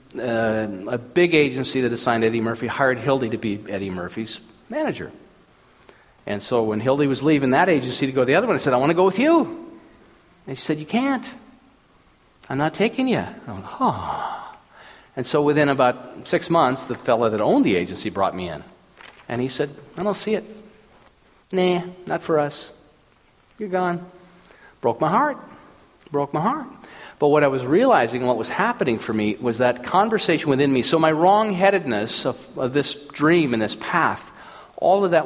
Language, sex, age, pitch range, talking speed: English, male, 40-59, 130-205 Hz, 185 wpm